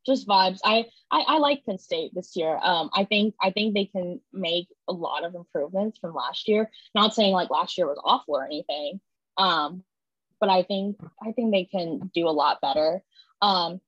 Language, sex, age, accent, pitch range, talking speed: English, female, 10-29, American, 180-225 Hz, 205 wpm